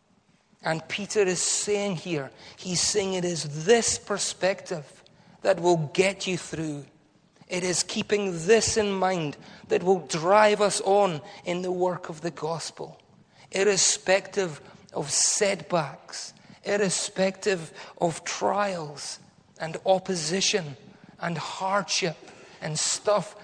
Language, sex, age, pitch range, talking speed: English, male, 40-59, 160-195 Hz, 115 wpm